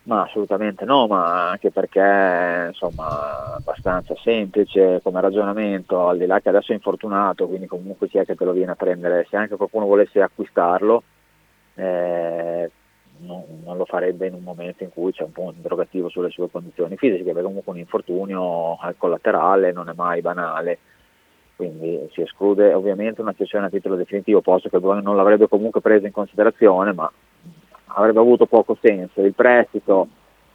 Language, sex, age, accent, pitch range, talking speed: Italian, male, 30-49, native, 90-105 Hz, 165 wpm